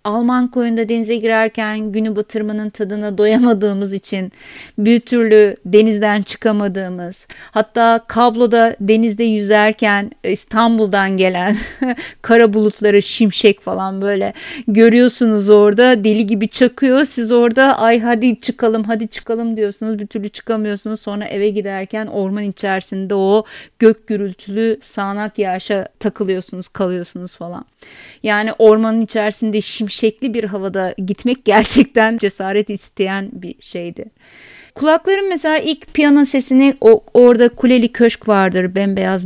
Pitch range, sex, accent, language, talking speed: 200-230 Hz, female, native, Turkish, 120 wpm